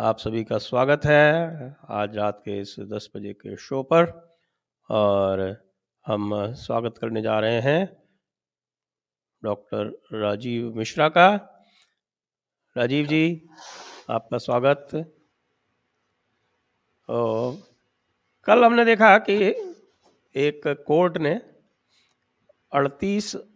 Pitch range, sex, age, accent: 100-155 Hz, male, 50-69, Indian